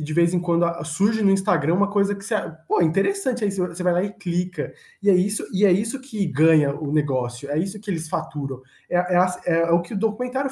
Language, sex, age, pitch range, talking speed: Portuguese, male, 20-39, 140-180 Hz, 235 wpm